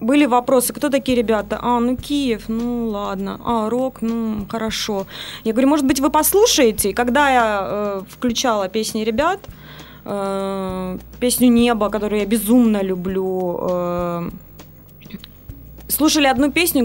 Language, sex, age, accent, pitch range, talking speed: Russian, female, 20-39, native, 195-245 Hz, 130 wpm